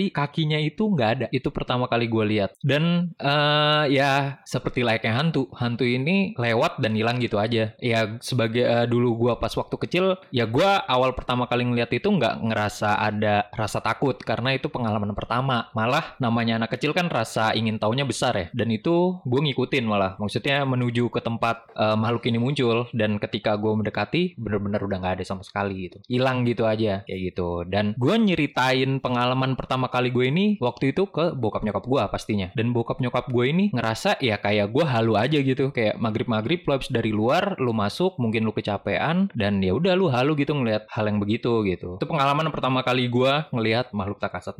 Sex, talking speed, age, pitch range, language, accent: male, 195 wpm, 20-39, 110-140 Hz, Indonesian, native